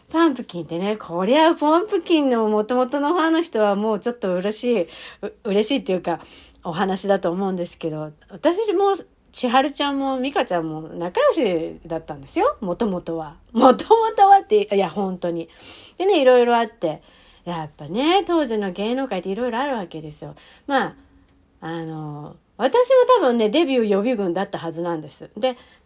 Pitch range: 175-280 Hz